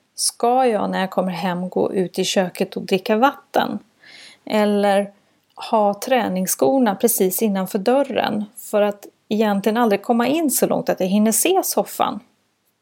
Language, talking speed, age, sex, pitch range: Swedish, 150 wpm, 30-49, female, 190-250 Hz